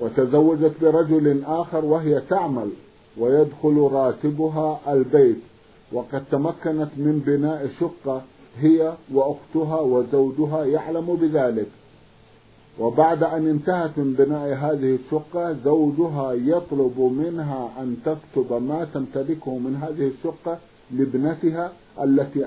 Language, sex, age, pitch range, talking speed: Arabic, male, 50-69, 130-160 Hz, 100 wpm